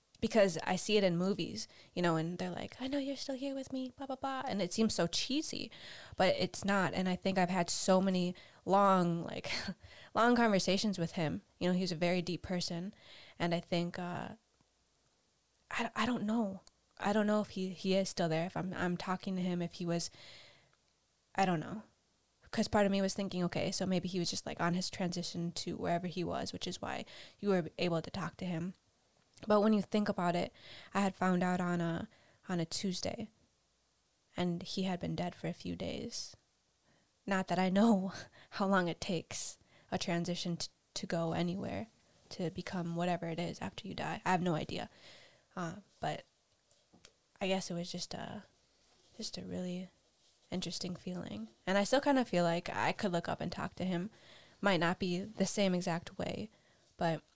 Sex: female